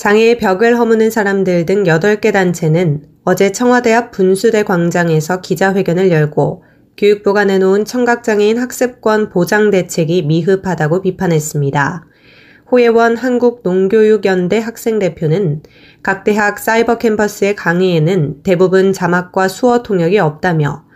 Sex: female